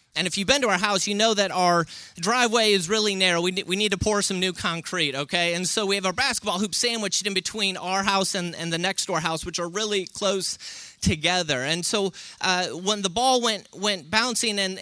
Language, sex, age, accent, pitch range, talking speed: English, male, 30-49, American, 175-220 Hz, 225 wpm